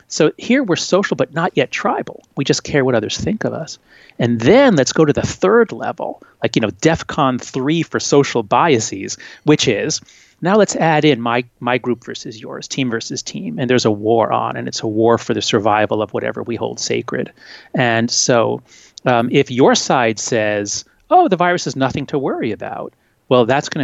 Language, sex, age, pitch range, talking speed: English, male, 30-49, 115-185 Hz, 205 wpm